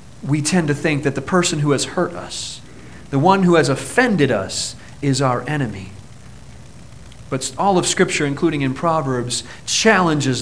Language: English